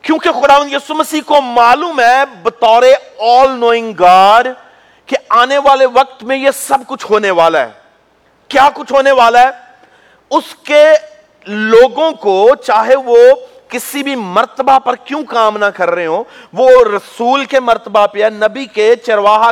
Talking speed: 145 wpm